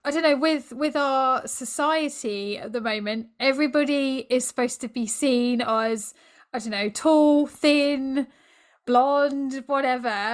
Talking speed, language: 140 wpm, English